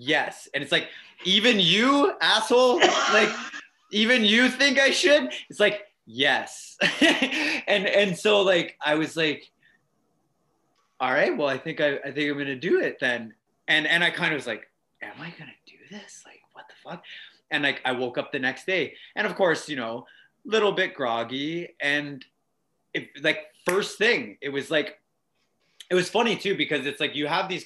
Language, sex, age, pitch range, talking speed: English, male, 30-49, 120-185 Hz, 190 wpm